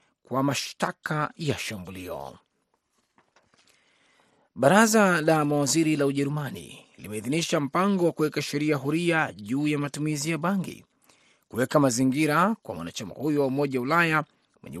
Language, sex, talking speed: Swahili, male, 120 wpm